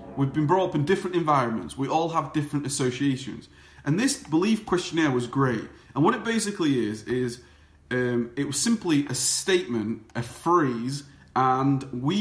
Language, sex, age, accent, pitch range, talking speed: English, male, 30-49, British, 125-170 Hz, 165 wpm